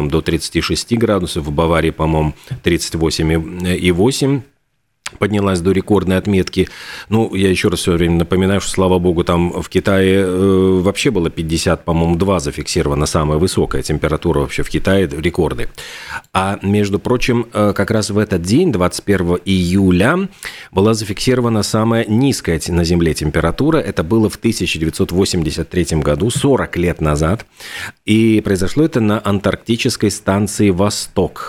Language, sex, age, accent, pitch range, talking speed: Russian, male, 40-59, native, 85-105 Hz, 135 wpm